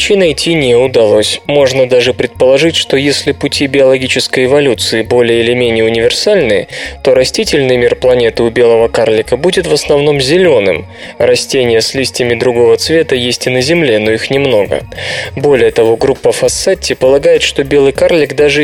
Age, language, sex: 20-39, Russian, male